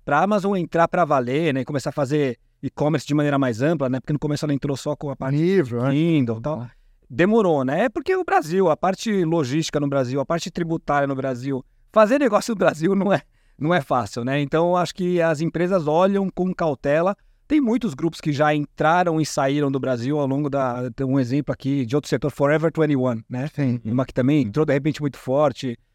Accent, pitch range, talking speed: Brazilian, 135-175 Hz, 215 wpm